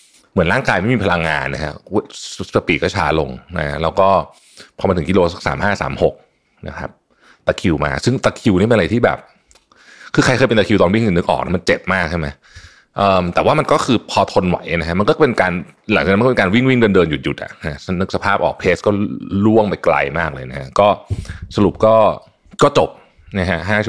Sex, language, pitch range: male, Thai, 85-105 Hz